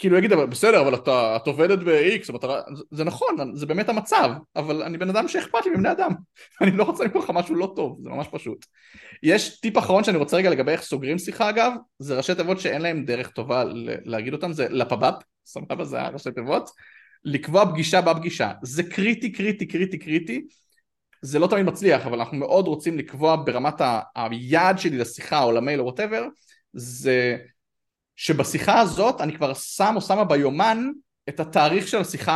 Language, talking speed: Hebrew, 160 wpm